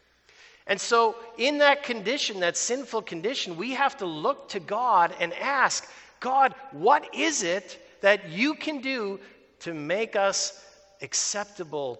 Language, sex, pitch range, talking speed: English, male, 150-225 Hz, 140 wpm